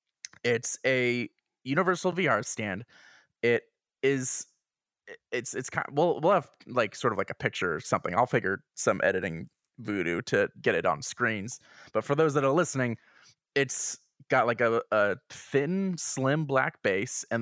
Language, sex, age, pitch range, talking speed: English, male, 20-39, 115-145 Hz, 165 wpm